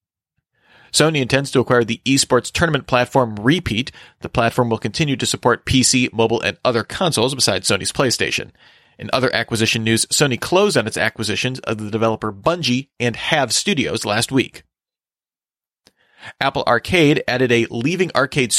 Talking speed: 150 wpm